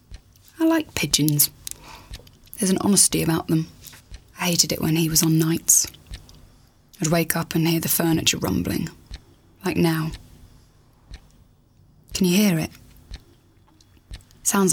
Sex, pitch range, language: female, 150-175 Hz, English